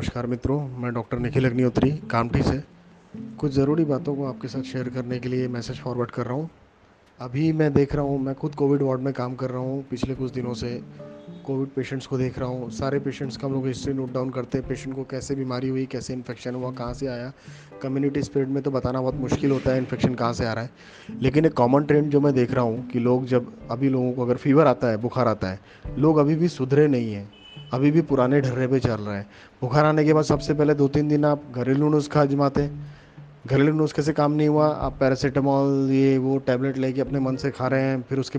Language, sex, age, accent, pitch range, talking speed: Hindi, male, 30-49, native, 130-145 Hz, 240 wpm